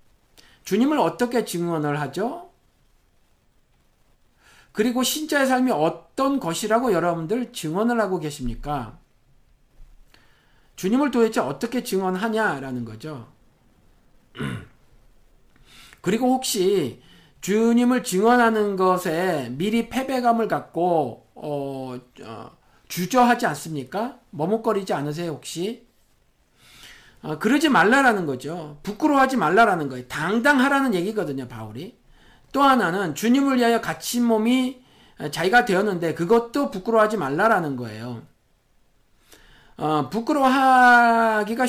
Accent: native